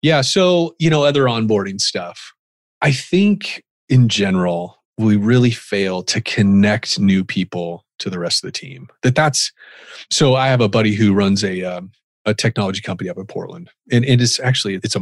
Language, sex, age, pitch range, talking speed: English, male, 30-49, 105-130 Hz, 190 wpm